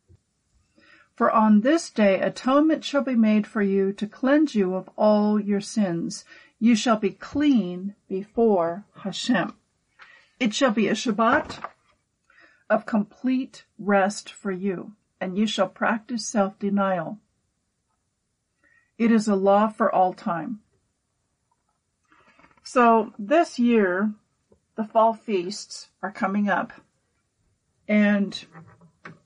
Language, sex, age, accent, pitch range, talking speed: English, female, 50-69, American, 195-230 Hz, 115 wpm